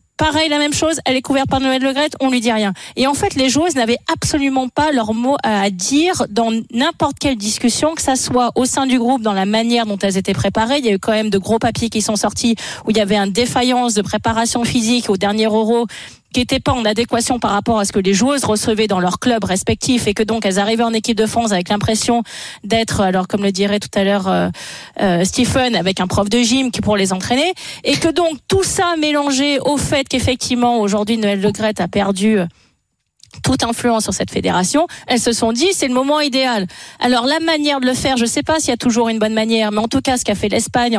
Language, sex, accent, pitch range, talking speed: French, female, French, 210-260 Hz, 245 wpm